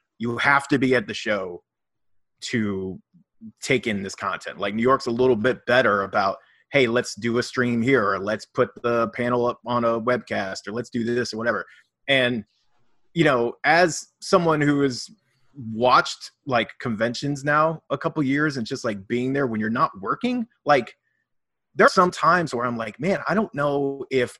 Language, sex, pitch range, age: English, male, 120-155 Hz, 30-49